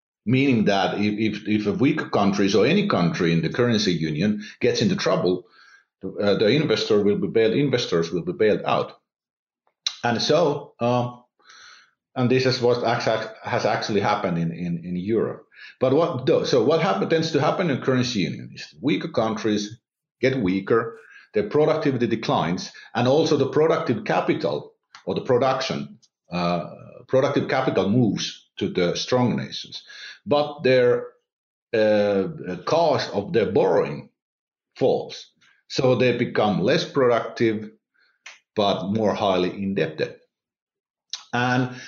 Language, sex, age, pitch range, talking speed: English, male, 50-69, 90-130 Hz, 140 wpm